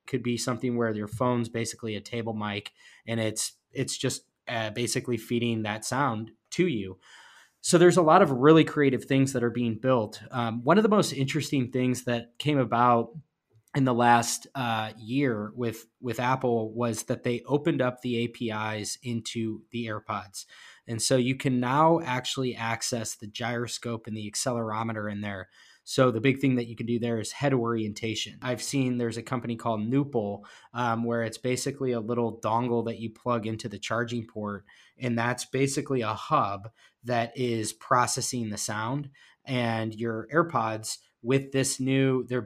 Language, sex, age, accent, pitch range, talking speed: English, male, 20-39, American, 110-130 Hz, 175 wpm